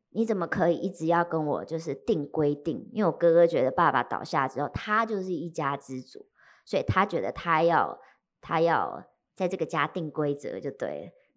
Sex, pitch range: male, 155-195 Hz